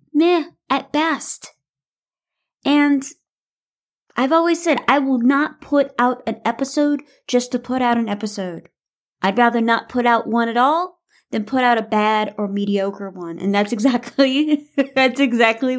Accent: American